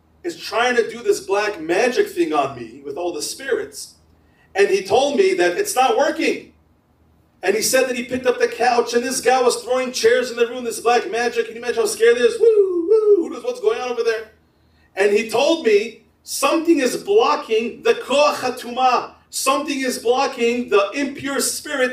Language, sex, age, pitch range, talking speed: English, male, 40-59, 240-335 Hz, 195 wpm